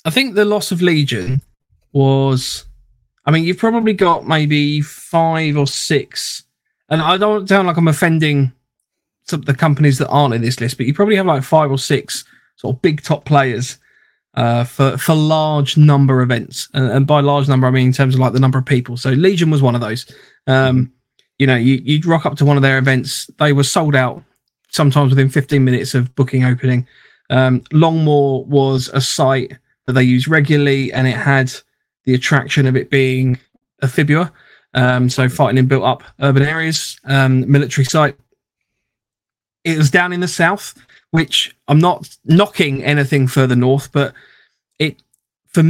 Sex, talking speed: male, 185 wpm